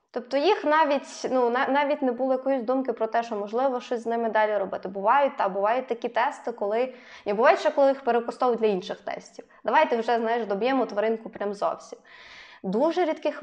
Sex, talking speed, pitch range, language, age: female, 185 wpm, 215-255 Hz, Ukrainian, 20-39